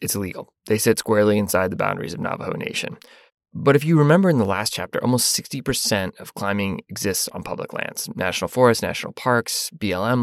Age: 20-39